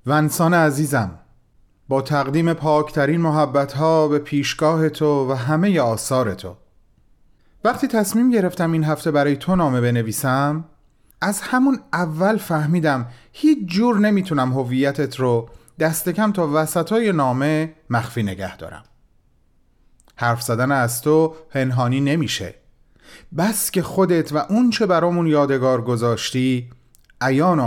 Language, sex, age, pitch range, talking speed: Persian, male, 30-49, 120-190 Hz, 120 wpm